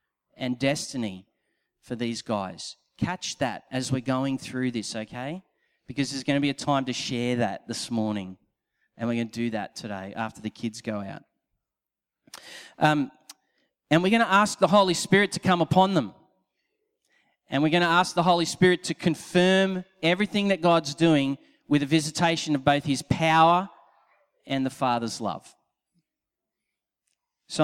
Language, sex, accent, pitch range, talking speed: English, male, Australian, 125-170 Hz, 165 wpm